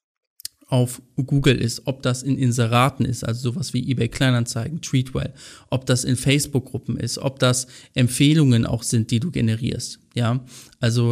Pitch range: 120-135 Hz